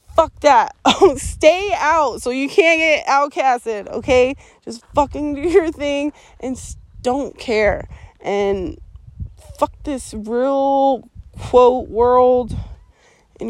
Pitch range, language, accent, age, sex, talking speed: 230-290 Hz, English, American, 20-39, female, 110 wpm